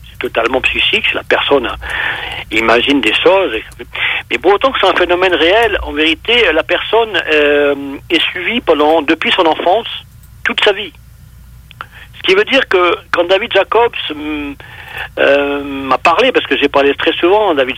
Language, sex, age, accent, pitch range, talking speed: French, male, 50-69, French, 145-240 Hz, 165 wpm